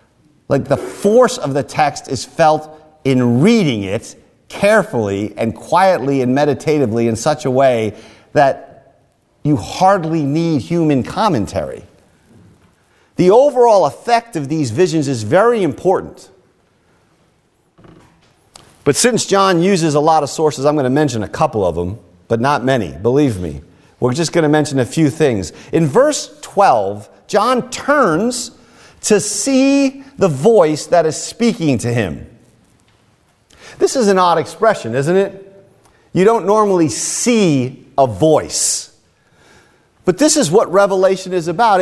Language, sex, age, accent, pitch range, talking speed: English, male, 50-69, American, 145-210 Hz, 140 wpm